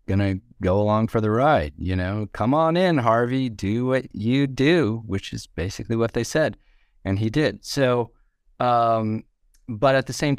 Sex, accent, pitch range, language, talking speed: male, American, 95-130 Hz, English, 185 wpm